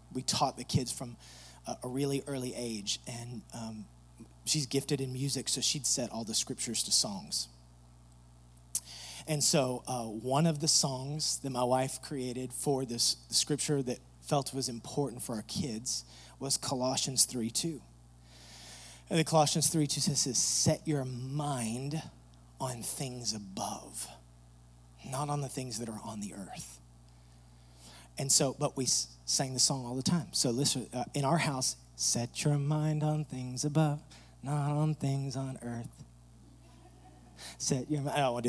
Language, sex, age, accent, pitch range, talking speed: English, male, 30-49, American, 115-160 Hz, 160 wpm